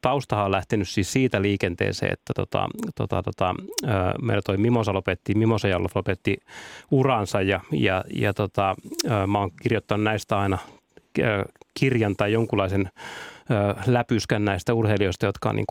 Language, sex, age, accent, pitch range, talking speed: Finnish, male, 30-49, native, 95-115 Hz, 140 wpm